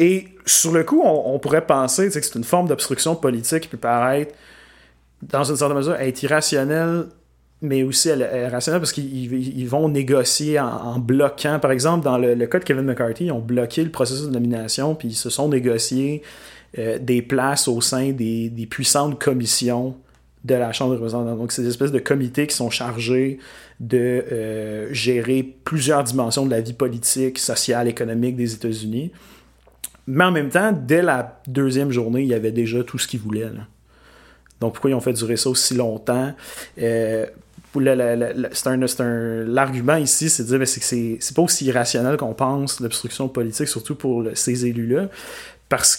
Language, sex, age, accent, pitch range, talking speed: French, male, 30-49, Canadian, 120-140 Hz, 195 wpm